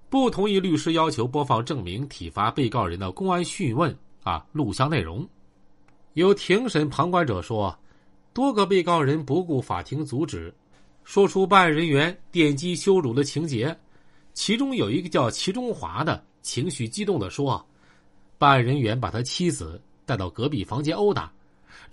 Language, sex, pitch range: Chinese, male, 130-185 Hz